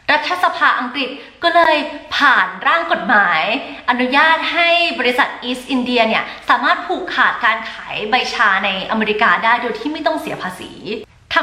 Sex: female